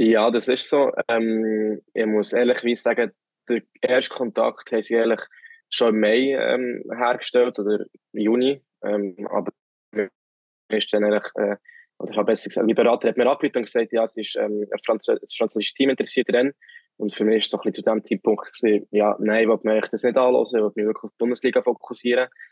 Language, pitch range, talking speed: German, 105-120 Hz, 195 wpm